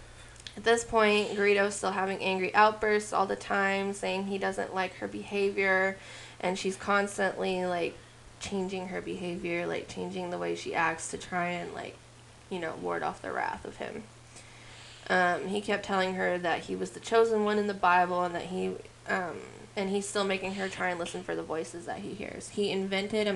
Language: English